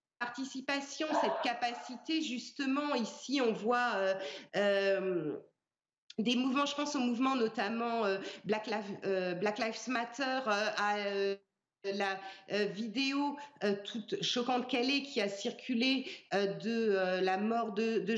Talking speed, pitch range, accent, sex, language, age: 140 wpm, 200-255 Hz, French, female, French, 40-59